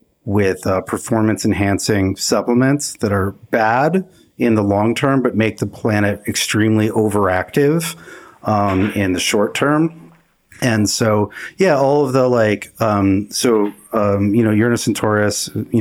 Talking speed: 145 wpm